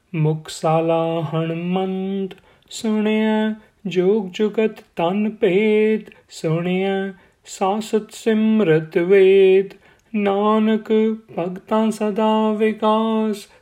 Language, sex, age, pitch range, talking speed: Punjabi, male, 30-49, 165-220 Hz, 70 wpm